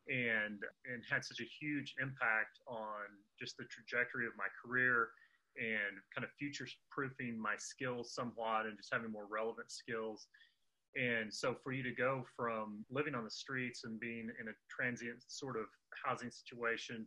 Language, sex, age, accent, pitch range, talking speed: English, male, 30-49, American, 110-125 Hz, 170 wpm